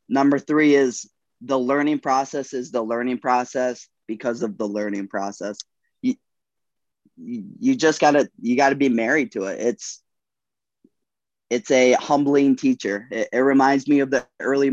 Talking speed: 150 wpm